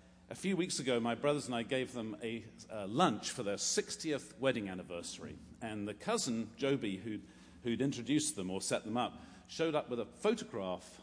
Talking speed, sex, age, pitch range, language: 190 wpm, male, 50-69, 105-145 Hz, English